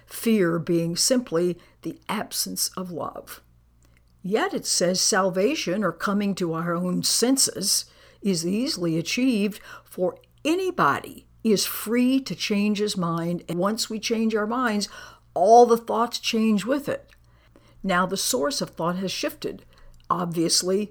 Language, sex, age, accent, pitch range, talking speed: English, female, 60-79, American, 170-225 Hz, 140 wpm